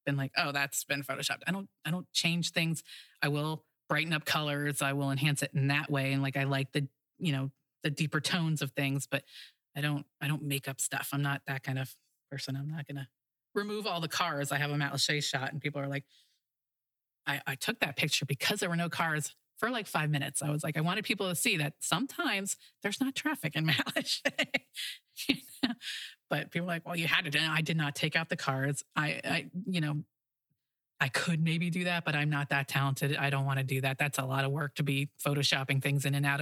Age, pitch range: 30-49, 140-165 Hz